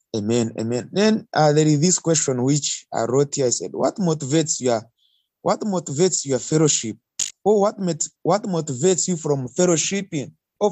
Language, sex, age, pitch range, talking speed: English, male, 30-49, 140-185 Hz, 170 wpm